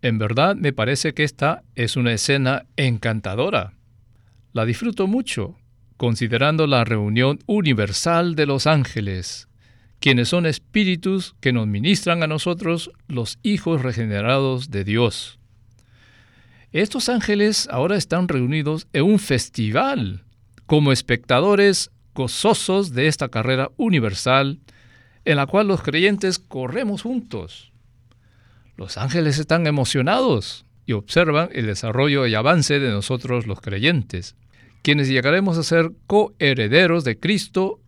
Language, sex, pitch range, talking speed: Spanish, male, 115-165 Hz, 120 wpm